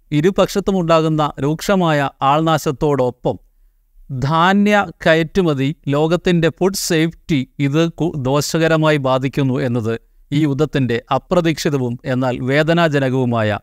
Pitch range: 140-180 Hz